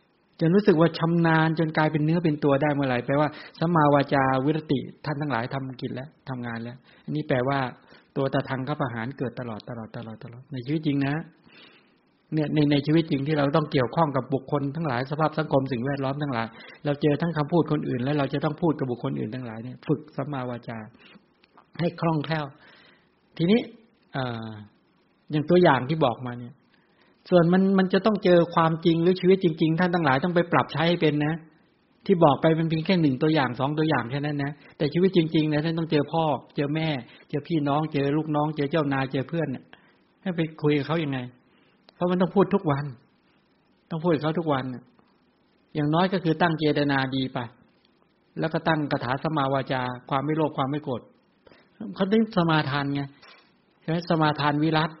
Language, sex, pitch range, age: English, male, 135-165 Hz, 60-79